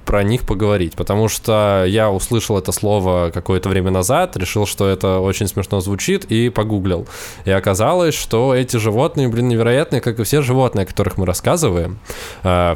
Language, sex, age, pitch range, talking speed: Russian, male, 20-39, 90-120 Hz, 170 wpm